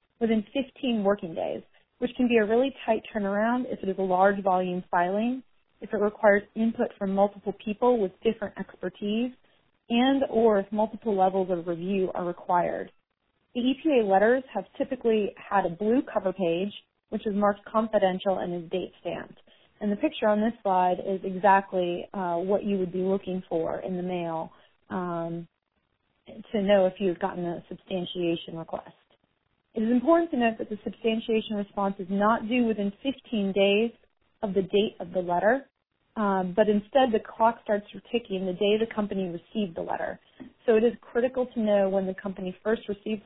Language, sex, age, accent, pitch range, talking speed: English, female, 30-49, American, 185-225 Hz, 175 wpm